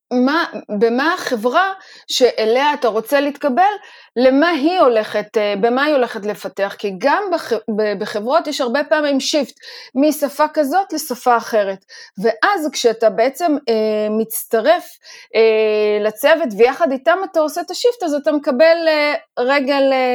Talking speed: 120 wpm